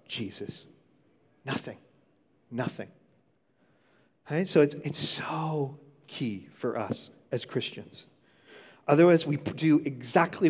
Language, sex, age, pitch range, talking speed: English, male, 40-59, 125-155 Hz, 95 wpm